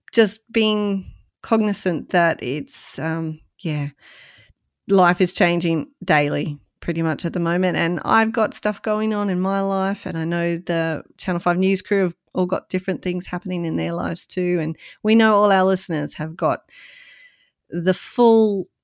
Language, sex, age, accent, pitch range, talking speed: English, female, 30-49, Australian, 175-240 Hz, 170 wpm